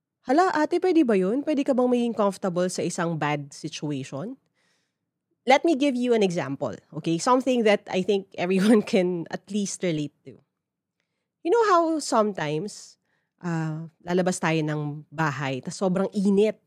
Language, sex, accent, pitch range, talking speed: English, female, Filipino, 170-230 Hz, 155 wpm